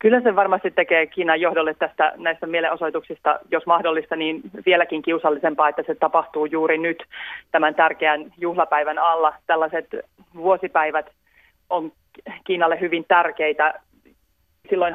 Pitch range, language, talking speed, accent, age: 150-170 Hz, Finnish, 115 wpm, native, 30-49